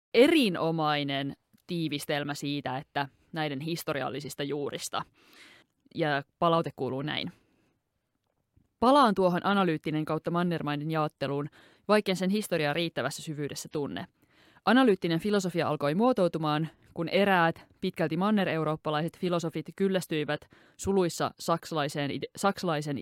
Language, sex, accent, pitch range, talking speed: Finnish, female, native, 150-185 Hz, 90 wpm